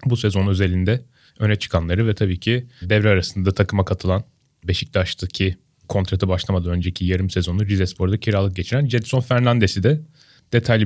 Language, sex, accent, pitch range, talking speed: Turkish, male, native, 95-125 Hz, 140 wpm